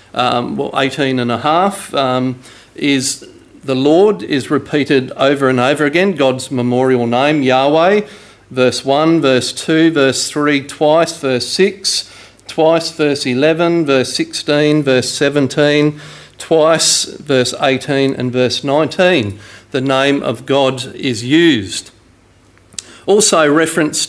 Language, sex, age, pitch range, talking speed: English, male, 50-69, 120-150 Hz, 125 wpm